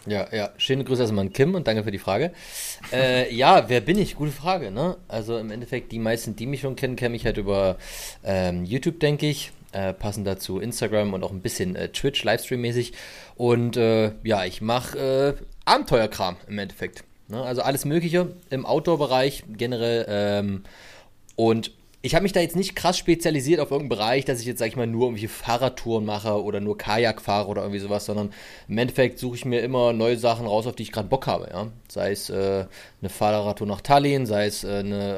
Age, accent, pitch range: 30-49, German, 100-130 Hz